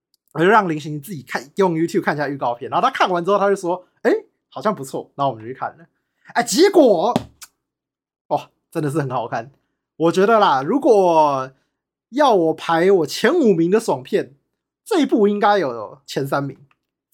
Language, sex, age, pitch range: Chinese, male, 20-39, 150-215 Hz